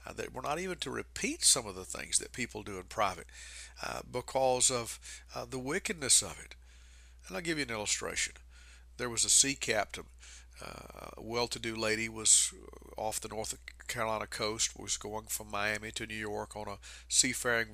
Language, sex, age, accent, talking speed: English, male, 50-69, American, 185 wpm